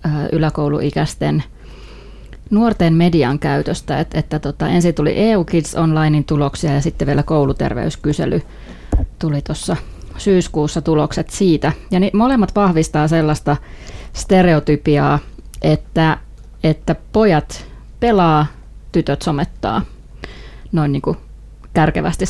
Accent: native